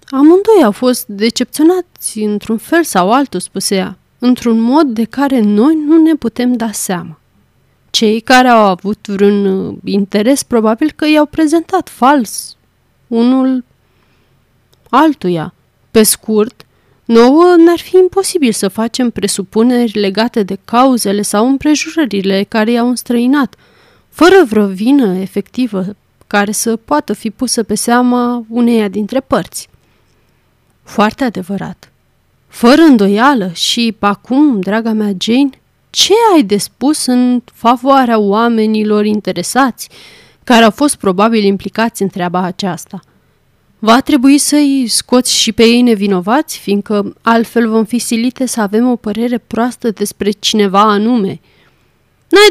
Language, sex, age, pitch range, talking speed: Romanian, female, 30-49, 200-270 Hz, 130 wpm